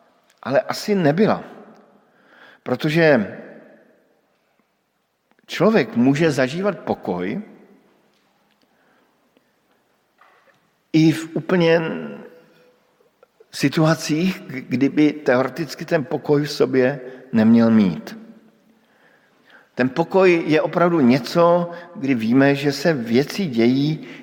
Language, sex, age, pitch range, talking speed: Slovak, male, 50-69, 125-165 Hz, 75 wpm